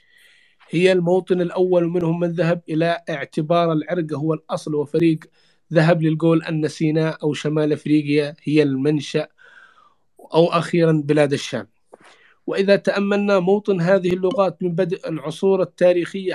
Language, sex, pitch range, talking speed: English, male, 160-180 Hz, 125 wpm